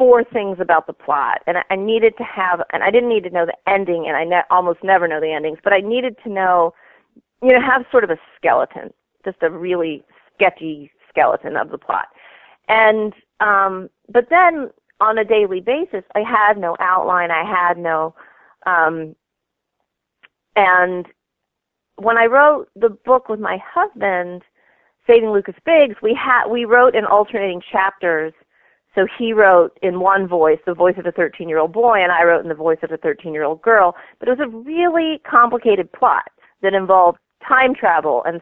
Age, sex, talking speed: 40-59, female, 175 wpm